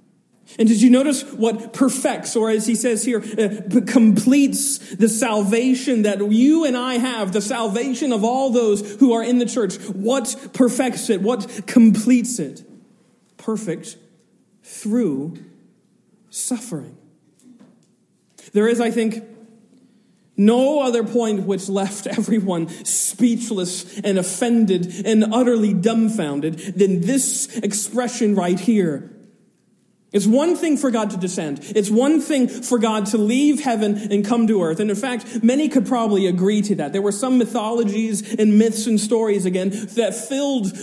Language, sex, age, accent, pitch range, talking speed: English, male, 40-59, American, 200-240 Hz, 145 wpm